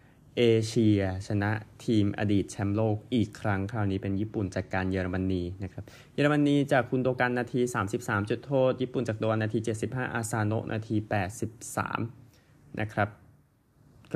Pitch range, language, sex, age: 105-130 Hz, Thai, male, 20-39